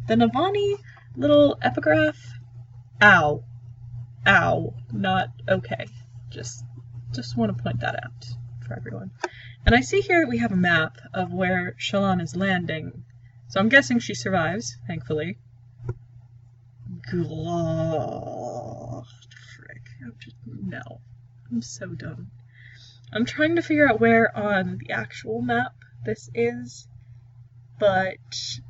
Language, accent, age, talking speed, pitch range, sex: English, American, 10-29, 120 wpm, 120-175 Hz, female